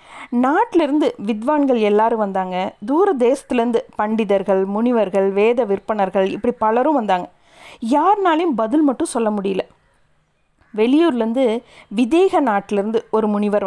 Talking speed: 100 wpm